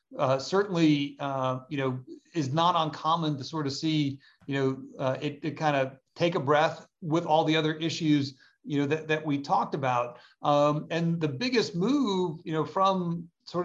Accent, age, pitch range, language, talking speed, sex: American, 40-59, 140-165 Hz, English, 190 wpm, male